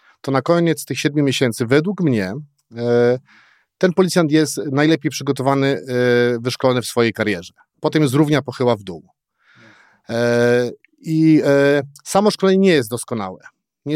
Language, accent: Polish, native